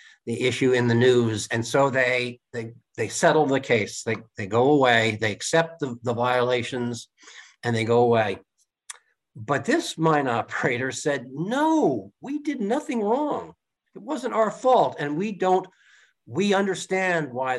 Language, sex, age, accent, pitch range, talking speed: English, male, 50-69, American, 120-175 Hz, 155 wpm